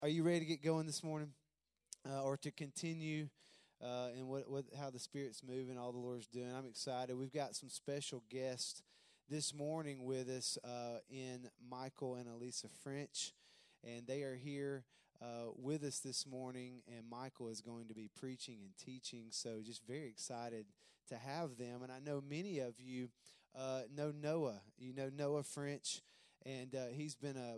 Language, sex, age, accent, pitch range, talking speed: English, male, 20-39, American, 120-145 Hz, 180 wpm